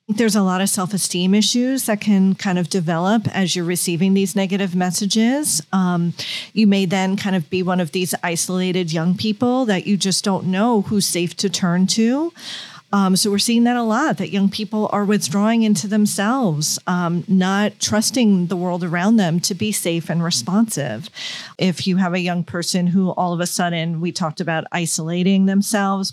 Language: English